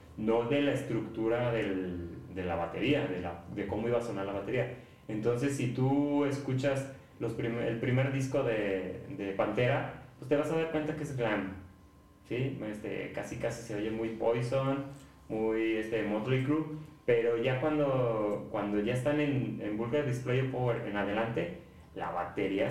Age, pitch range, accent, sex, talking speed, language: 30-49, 110-135 Hz, Mexican, male, 170 wpm, Spanish